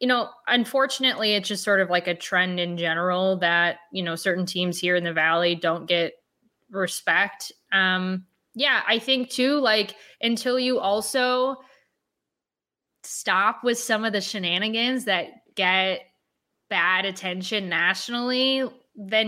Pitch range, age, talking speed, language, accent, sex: 190-240 Hz, 20-39, 140 wpm, English, American, female